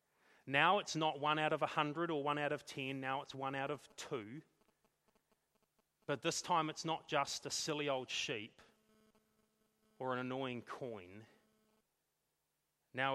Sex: male